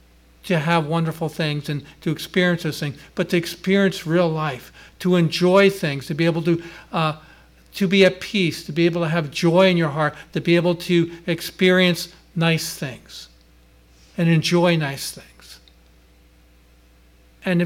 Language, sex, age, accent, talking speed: English, male, 50-69, American, 160 wpm